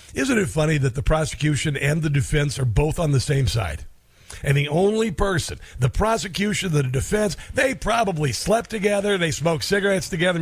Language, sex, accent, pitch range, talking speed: English, male, American, 130-190 Hz, 175 wpm